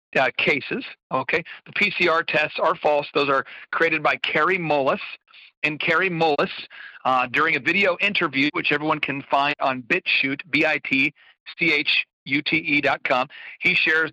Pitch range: 150-200 Hz